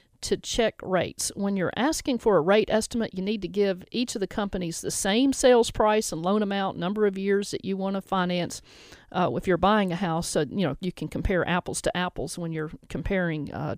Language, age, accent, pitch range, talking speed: English, 40-59, American, 175-220 Hz, 225 wpm